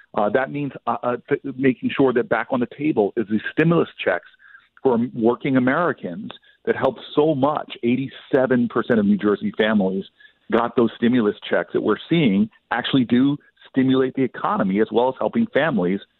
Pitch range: 110-140 Hz